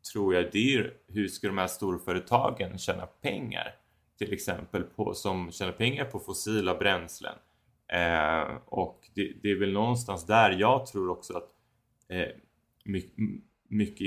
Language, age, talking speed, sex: Swedish, 20-39, 155 wpm, male